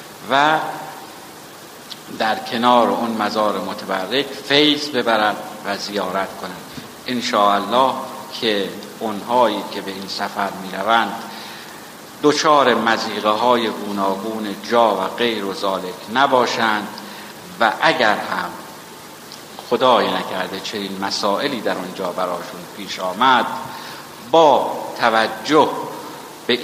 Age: 60-79